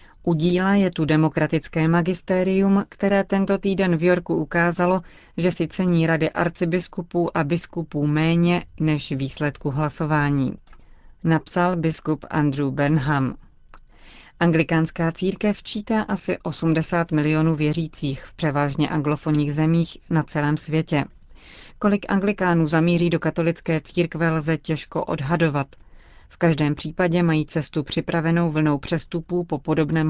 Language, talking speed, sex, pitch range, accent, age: Czech, 120 wpm, female, 150-175 Hz, native, 30-49